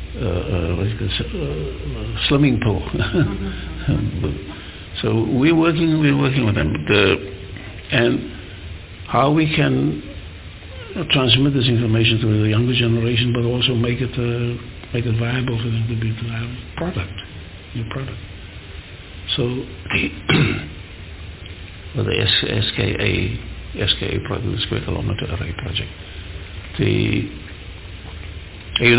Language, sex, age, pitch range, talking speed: English, male, 60-79, 95-115 Hz, 130 wpm